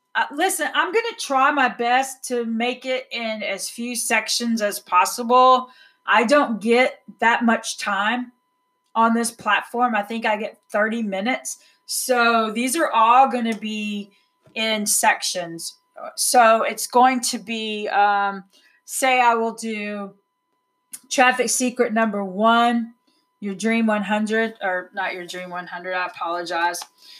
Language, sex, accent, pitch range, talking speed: English, female, American, 210-255 Hz, 145 wpm